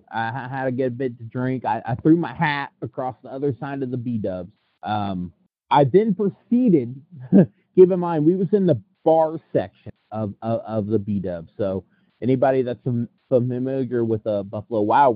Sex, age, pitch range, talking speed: male, 30-49, 115-165 Hz, 195 wpm